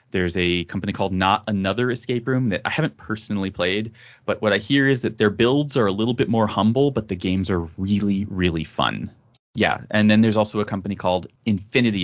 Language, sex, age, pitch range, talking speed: English, male, 30-49, 90-110 Hz, 215 wpm